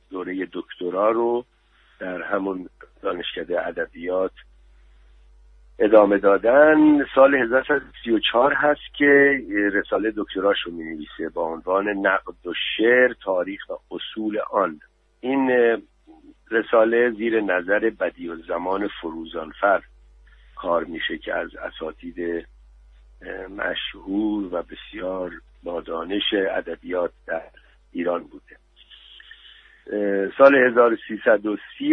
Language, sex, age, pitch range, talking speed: Persian, male, 60-79, 85-120 Hz, 90 wpm